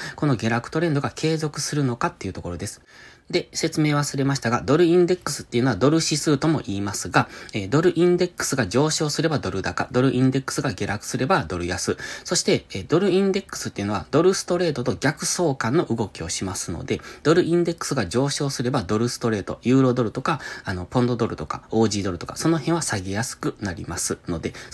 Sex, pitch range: male, 110-160 Hz